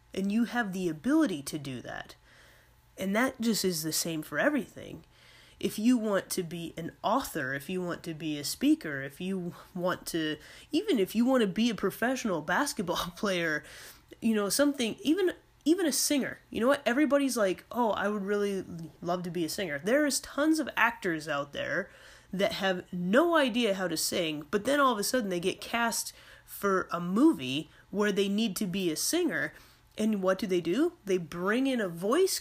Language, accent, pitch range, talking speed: English, American, 180-275 Hz, 200 wpm